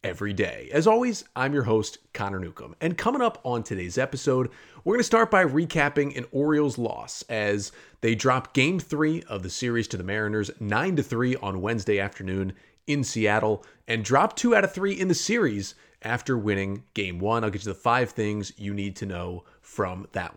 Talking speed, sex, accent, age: 200 wpm, male, American, 30-49